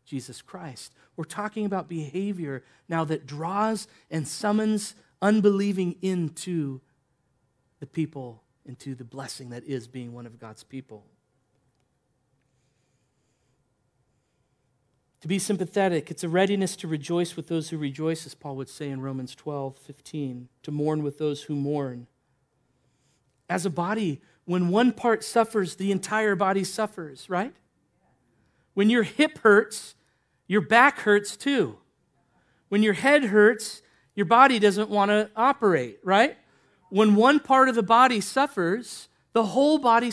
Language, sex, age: English, male, 40-59